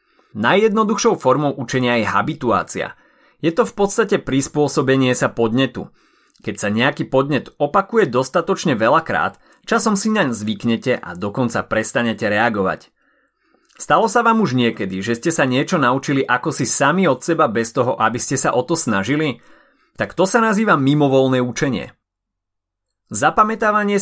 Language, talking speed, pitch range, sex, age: Slovak, 140 wpm, 125-200 Hz, male, 30-49